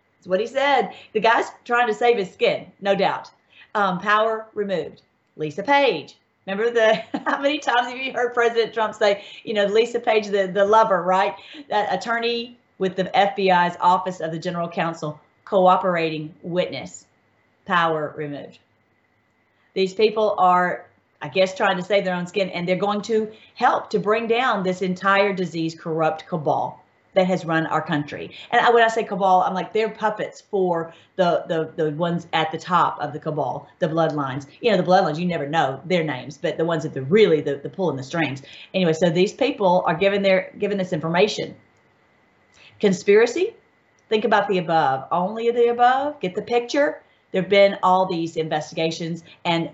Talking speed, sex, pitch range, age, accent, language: 180 wpm, female, 165-220 Hz, 40-59, American, English